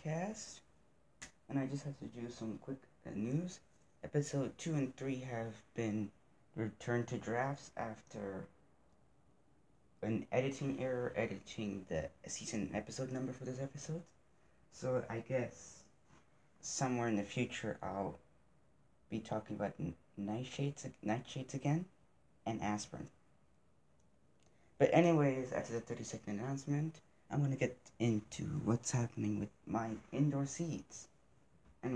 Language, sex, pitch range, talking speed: English, male, 110-135 Hz, 120 wpm